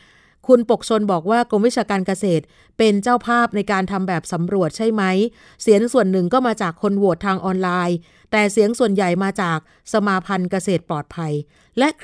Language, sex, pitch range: Thai, female, 180-225 Hz